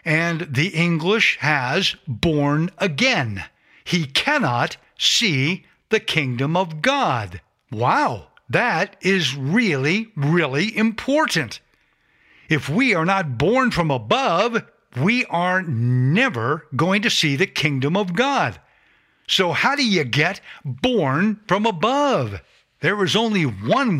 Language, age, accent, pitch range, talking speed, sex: English, 60-79, American, 135-205 Hz, 120 wpm, male